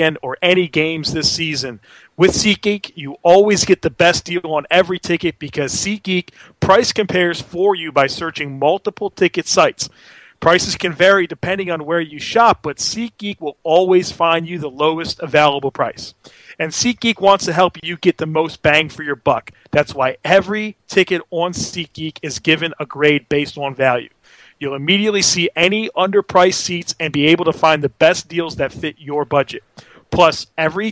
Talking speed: 175 wpm